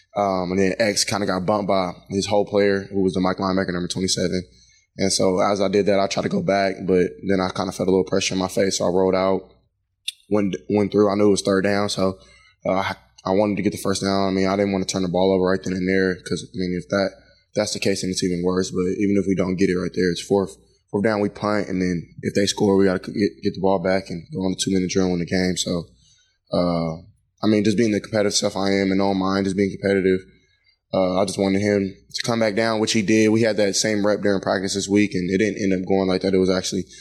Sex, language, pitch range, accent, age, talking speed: male, English, 95-100 Hz, American, 20-39, 290 wpm